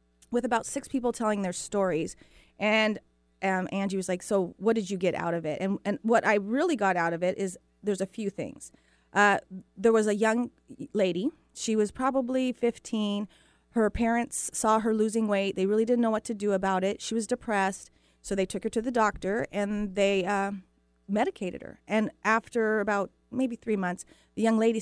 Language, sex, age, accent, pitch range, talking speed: English, female, 30-49, American, 185-230 Hz, 200 wpm